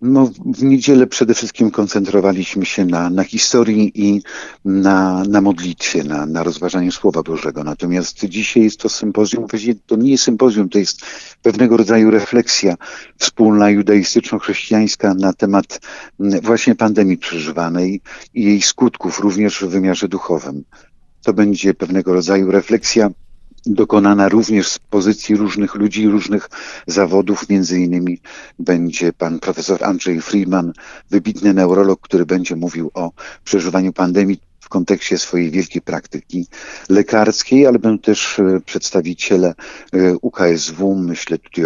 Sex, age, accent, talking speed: male, 50-69, native, 130 wpm